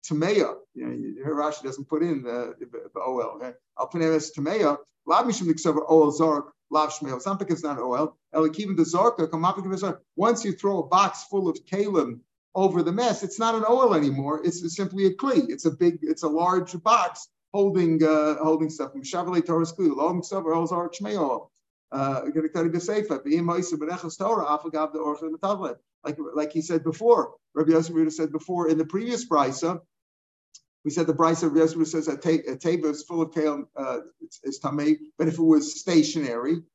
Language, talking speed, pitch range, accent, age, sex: English, 185 wpm, 155-190 Hz, American, 50-69, male